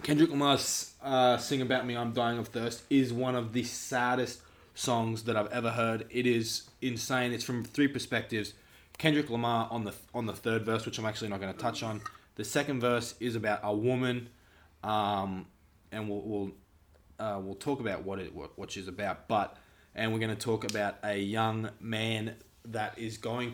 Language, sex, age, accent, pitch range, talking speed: English, male, 20-39, Australian, 105-125 Hz, 195 wpm